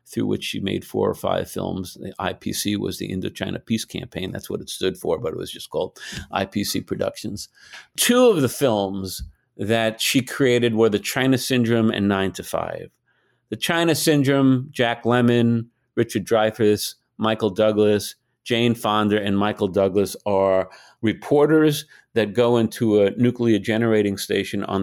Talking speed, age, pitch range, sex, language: 160 wpm, 50-69, 105-135 Hz, male, English